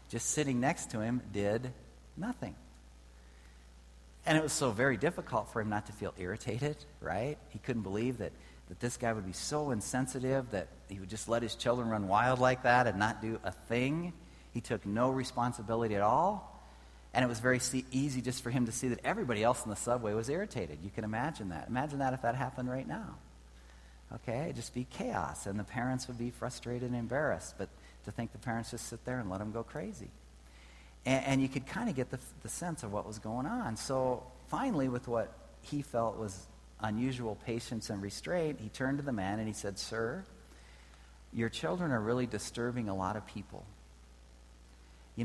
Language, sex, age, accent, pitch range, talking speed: English, male, 40-59, American, 90-125 Hz, 205 wpm